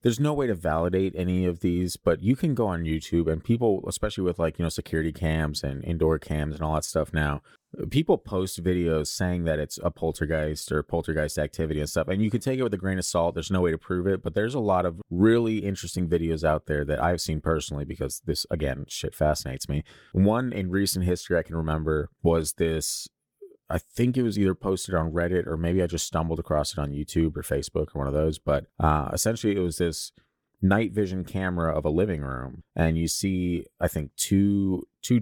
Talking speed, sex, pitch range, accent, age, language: 225 wpm, male, 80-95 Hz, American, 30-49, English